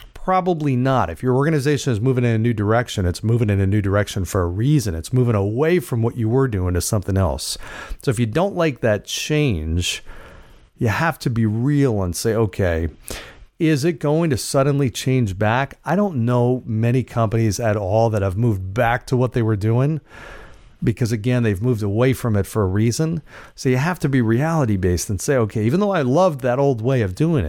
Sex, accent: male, American